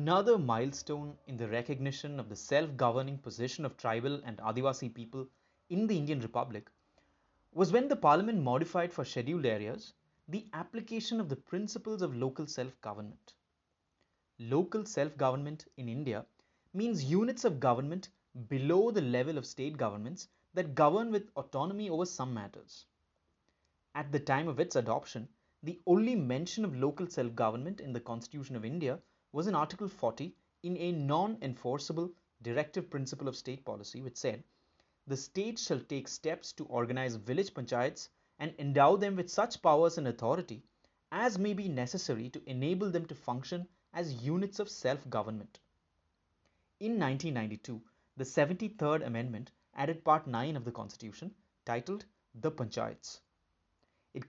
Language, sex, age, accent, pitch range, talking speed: English, male, 30-49, Indian, 120-175 Hz, 150 wpm